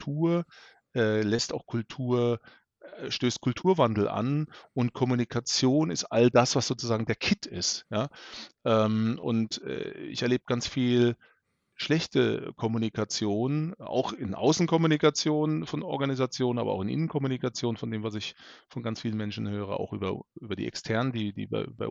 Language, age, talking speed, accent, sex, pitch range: German, 30-49, 140 wpm, German, male, 105-125 Hz